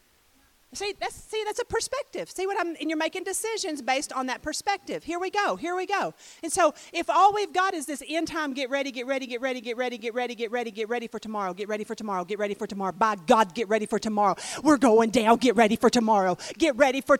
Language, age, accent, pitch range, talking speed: English, 40-59, American, 225-310 Hz, 255 wpm